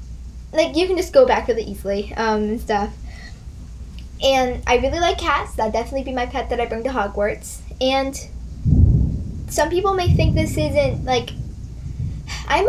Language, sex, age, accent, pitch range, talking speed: English, female, 10-29, American, 195-260 Hz, 165 wpm